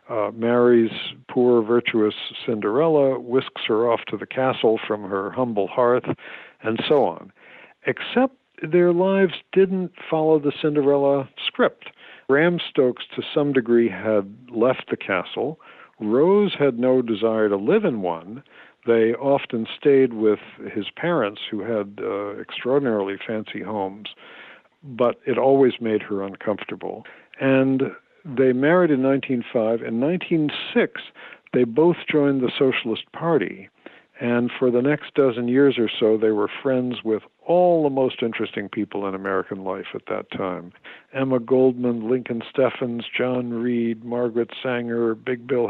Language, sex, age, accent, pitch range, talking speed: English, male, 60-79, American, 110-140 Hz, 140 wpm